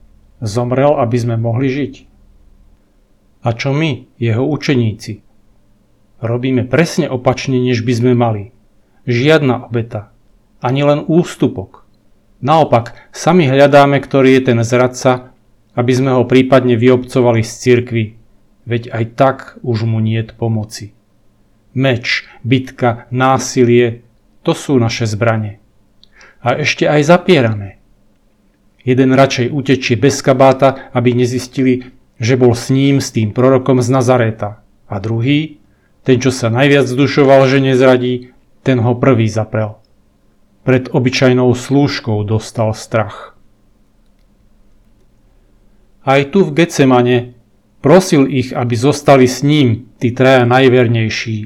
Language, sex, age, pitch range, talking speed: Slovak, male, 40-59, 110-130 Hz, 120 wpm